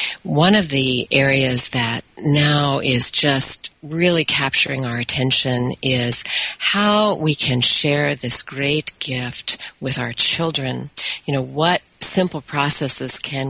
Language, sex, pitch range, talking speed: English, female, 125-150 Hz, 130 wpm